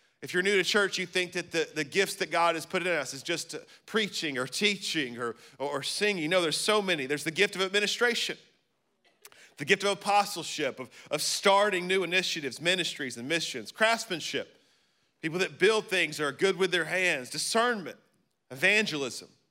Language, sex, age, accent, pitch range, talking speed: English, male, 40-59, American, 150-195 Hz, 185 wpm